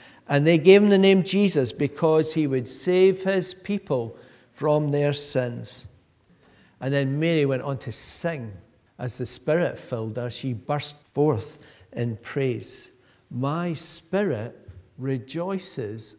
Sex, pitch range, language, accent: male, 125-160 Hz, English, British